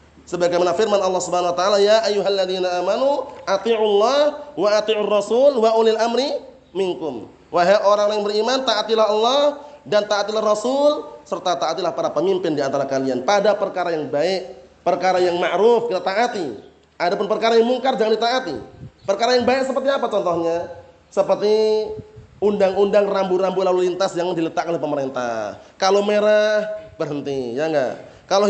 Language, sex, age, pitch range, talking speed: Indonesian, male, 30-49, 175-225 Hz, 145 wpm